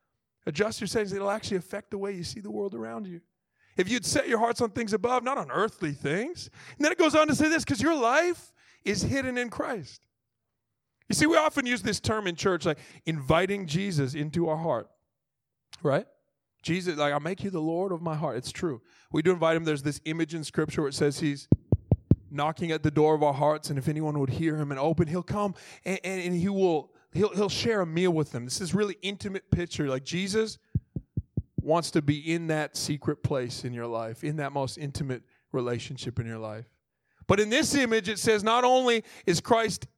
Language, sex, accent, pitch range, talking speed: English, male, American, 155-230 Hz, 220 wpm